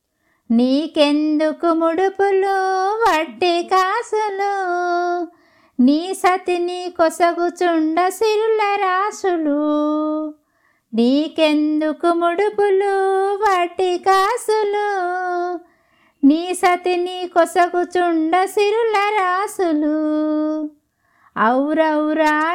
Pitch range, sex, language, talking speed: 320-390 Hz, female, Telugu, 45 wpm